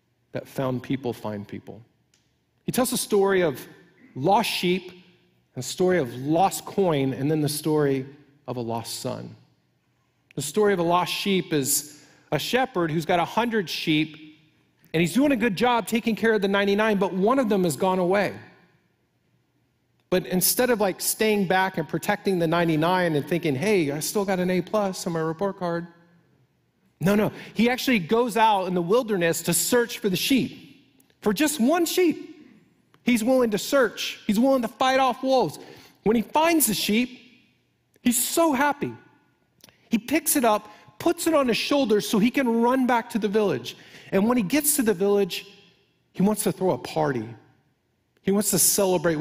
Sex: male